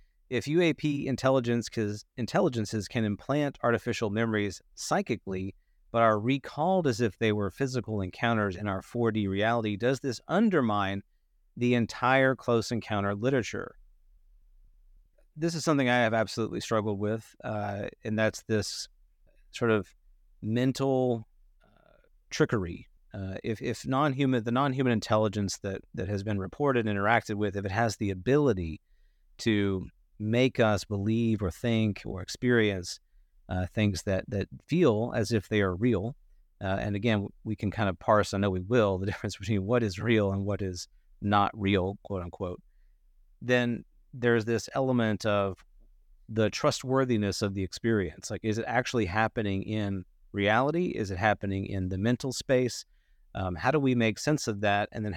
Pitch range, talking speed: 100-120 Hz, 155 wpm